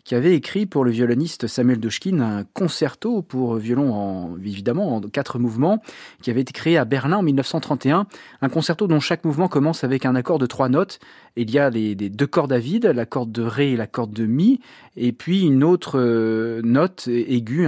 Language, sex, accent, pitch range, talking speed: French, male, French, 120-165 Hz, 205 wpm